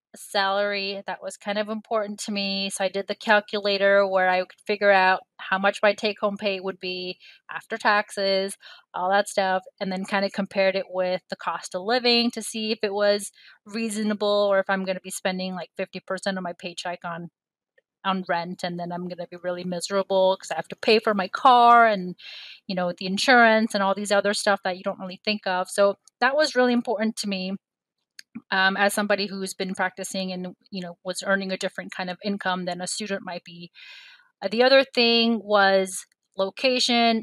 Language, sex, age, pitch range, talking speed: English, female, 20-39, 190-210 Hz, 205 wpm